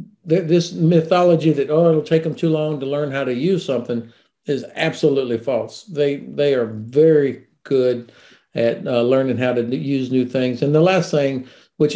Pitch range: 130-160 Hz